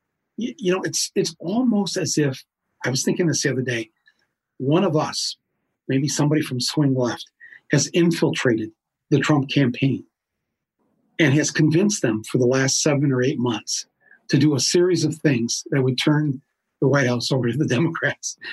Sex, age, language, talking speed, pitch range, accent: male, 50-69, English, 175 wpm, 130-165 Hz, American